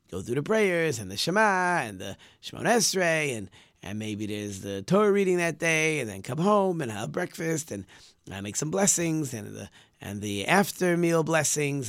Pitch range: 105-175 Hz